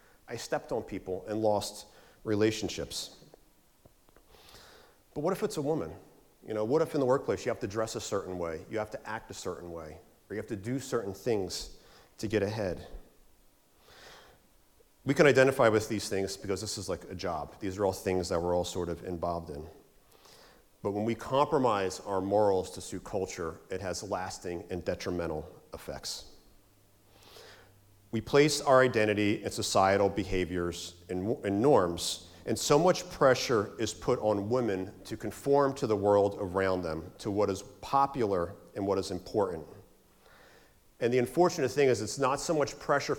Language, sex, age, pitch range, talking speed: English, male, 40-59, 95-120 Hz, 170 wpm